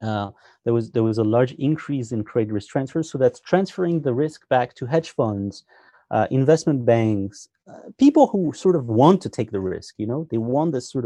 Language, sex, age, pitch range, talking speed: English, male, 30-49, 110-150 Hz, 215 wpm